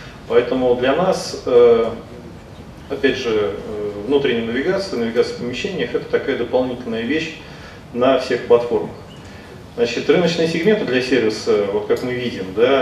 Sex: male